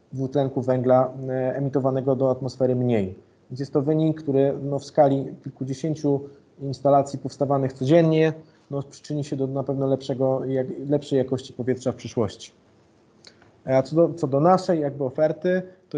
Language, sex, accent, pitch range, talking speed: Polish, male, native, 130-145 Hz, 145 wpm